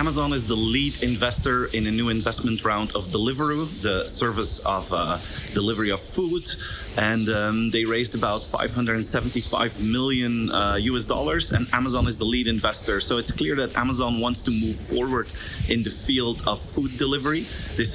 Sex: male